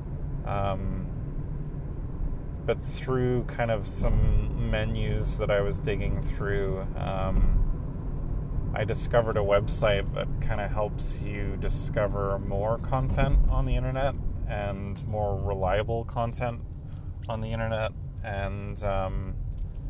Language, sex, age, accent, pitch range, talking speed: English, male, 30-49, American, 90-110 Hz, 110 wpm